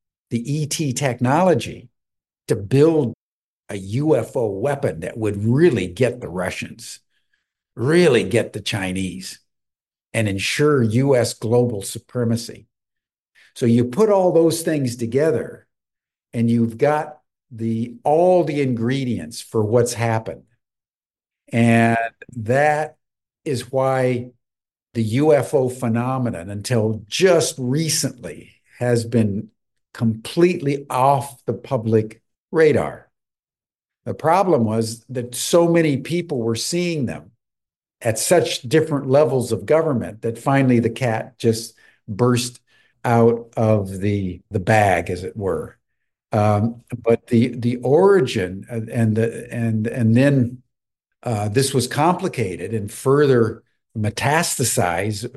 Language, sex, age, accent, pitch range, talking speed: English, male, 60-79, American, 115-140 Hz, 115 wpm